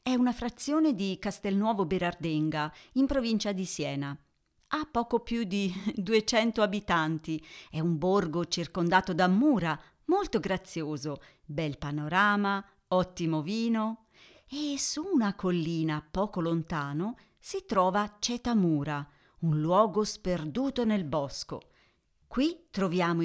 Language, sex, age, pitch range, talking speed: Italian, female, 40-59, 170-230 Hz, 115 wpm